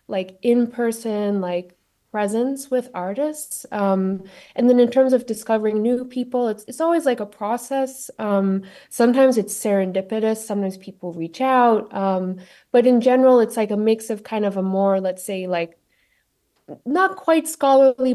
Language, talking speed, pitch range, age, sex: English, 160 wpm, 190-240 Hz, 20-39, female